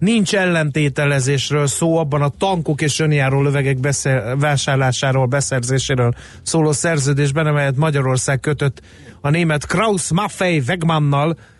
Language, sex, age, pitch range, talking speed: Hungarian, male, 30-49, 130-155 Hz, 110 wpm